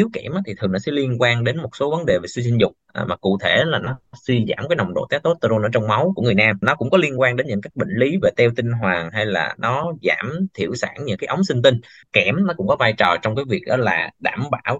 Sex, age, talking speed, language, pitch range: male, 20-39, 290 wpm, Vietnamese, 105-160 Hz